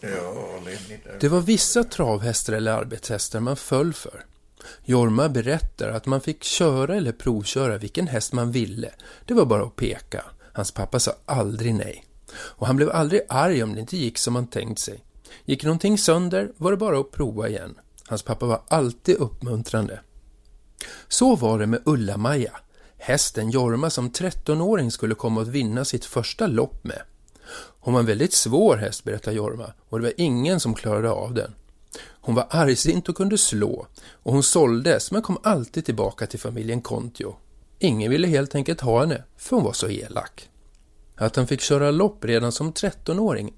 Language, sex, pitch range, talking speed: Swedish, male, 110-155 Hz, 175 wpm